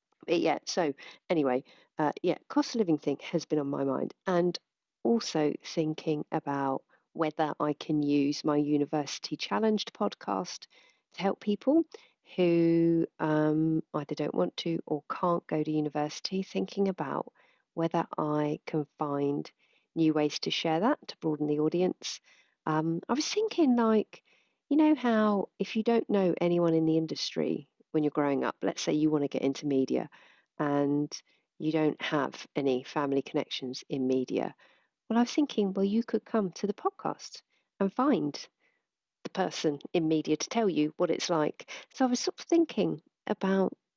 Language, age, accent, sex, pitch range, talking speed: English, 40-59, British, female, 150-215 Hz, 170 wpm